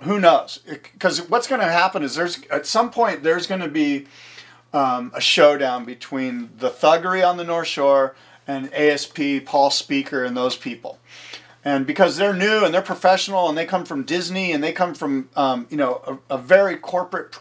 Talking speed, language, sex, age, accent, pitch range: 195 wpm, English, male, 40-59, American, 140-190 Hz